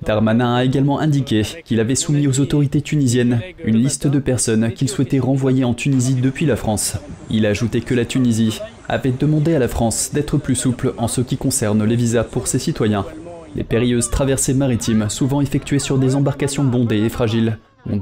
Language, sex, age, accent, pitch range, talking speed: French, male, 20-39, French, 115-135 Hz, 195 wpm